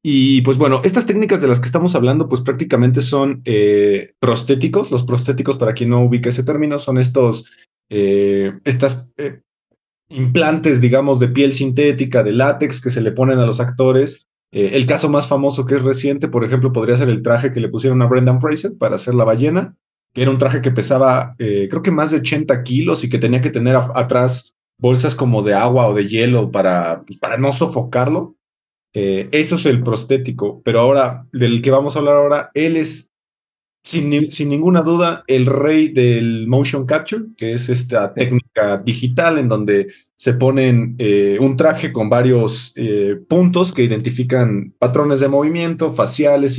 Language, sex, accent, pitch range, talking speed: Spanish, male, Mexican, 120-145 Hz, 180 wpm